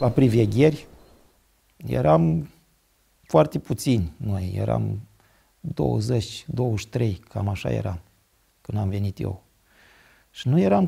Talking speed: 100 wpm